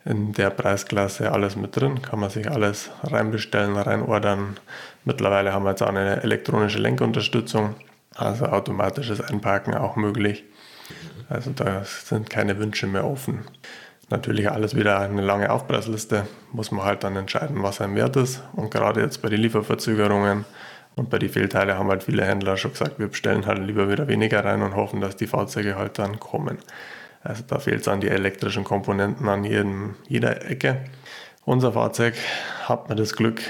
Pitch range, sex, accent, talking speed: 100-115 Hz, male, German, 170 wpm